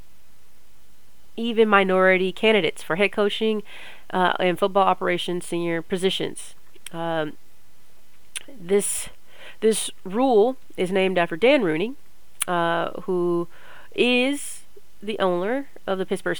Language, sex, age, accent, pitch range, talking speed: English, female, 30-49, American, 165-200 Hz, 105 wpm